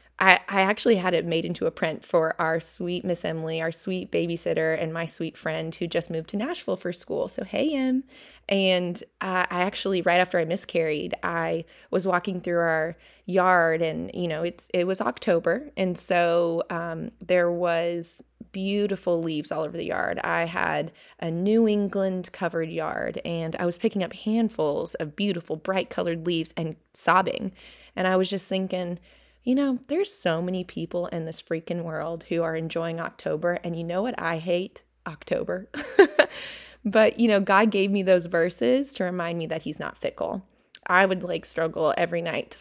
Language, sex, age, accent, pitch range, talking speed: English, female, 20-39, American, 165-195 Hz, 185 wpm